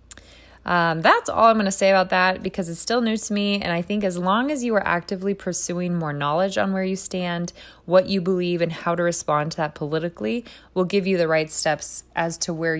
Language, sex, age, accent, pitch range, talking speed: English, female, 20-39, American, 165-225 Hz, 235 wpm